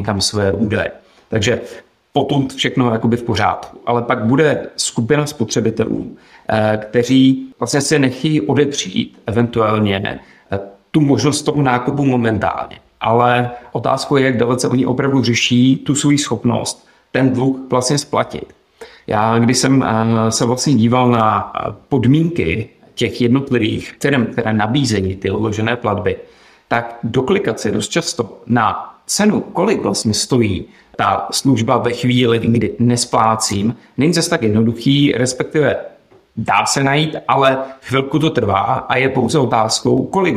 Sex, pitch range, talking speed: male, 115-135 Hz, 130 wpm